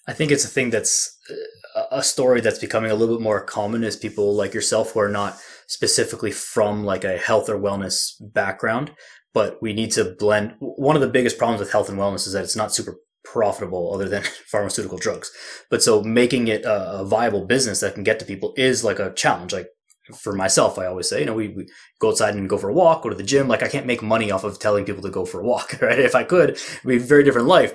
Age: 20-39